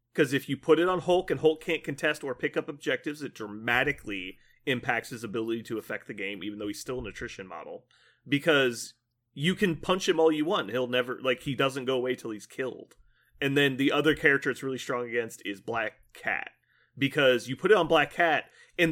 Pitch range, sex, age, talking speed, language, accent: 130-175 Hz, male, 30-49, 220 wpm, English, American